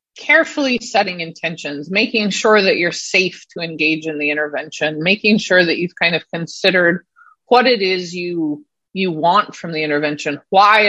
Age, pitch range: 30-49, 175-265 Hz